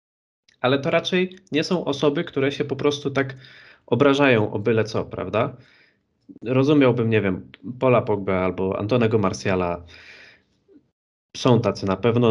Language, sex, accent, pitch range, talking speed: Polish, male, native, 110-145 Hz, 135 wpm